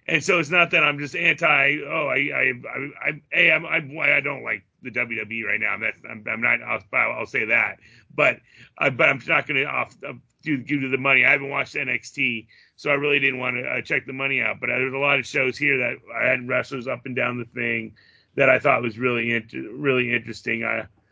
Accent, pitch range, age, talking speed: American, 115-140 Hz, 30-49, 255 wpm